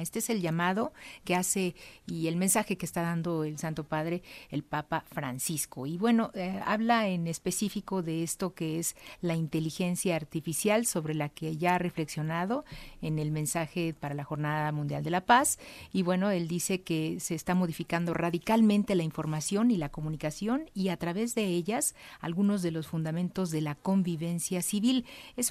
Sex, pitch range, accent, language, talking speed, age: female, 165-210 Hz, Mexican, Spanish, 175 wpm, 50-69